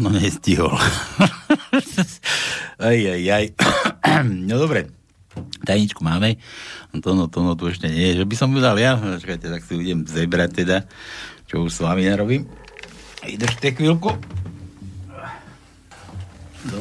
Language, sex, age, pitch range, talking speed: Slovak, male, 60-79, 100-135 Hz, 140 wpm